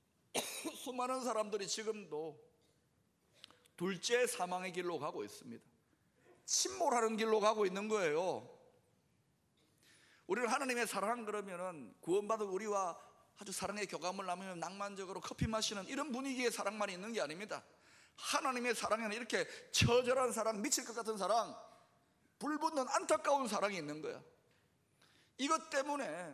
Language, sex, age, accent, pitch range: Korean, male, 30-49, native, 195-275 Hz